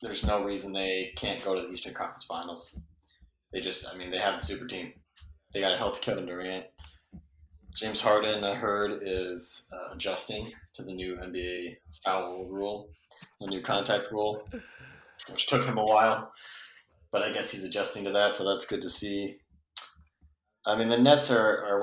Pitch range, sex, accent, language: 85-105 Hz, male, American, English